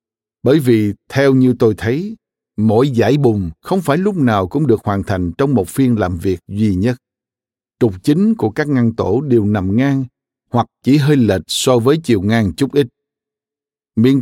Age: 60-79